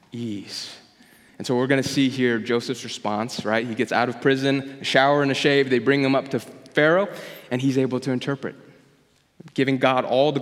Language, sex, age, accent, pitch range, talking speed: English, male, 20-39, American, 125-160 Hz, 205 wpm